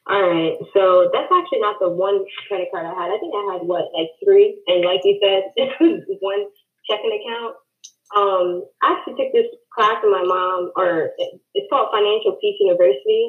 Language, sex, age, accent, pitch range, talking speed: English, female, 20-39, American, 185-265 Hz, 195 wpm